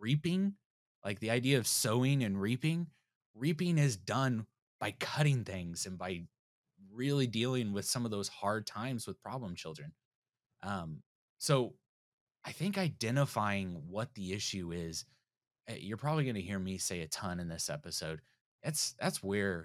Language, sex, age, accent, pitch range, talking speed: English, male, 20-39, American, 95-130 Hz, 155 wpm